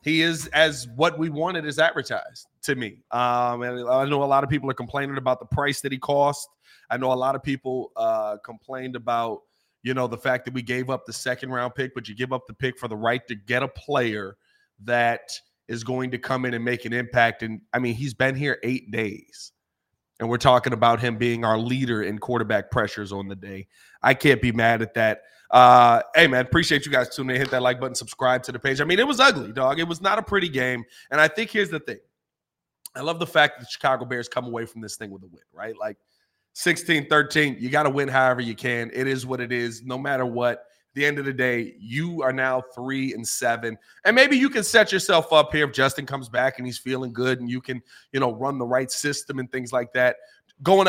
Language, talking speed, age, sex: English, 245 wpm, 30-49, male